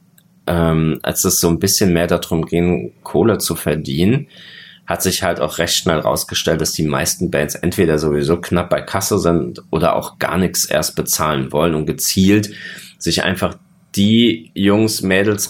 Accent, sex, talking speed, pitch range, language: German, male, 165 wpm, 90-115 Hz, German